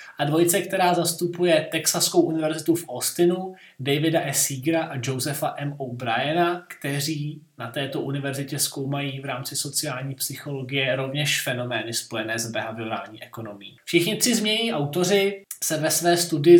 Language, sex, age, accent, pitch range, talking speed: Czech, male, 20-39, native, 145-170 Hz, 135 wpm